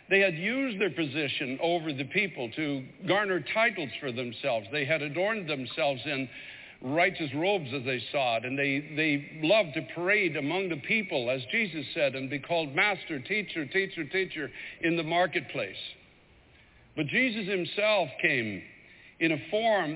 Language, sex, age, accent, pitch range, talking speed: English, male, 60-79, American, 140-195 Hz, 160 wpm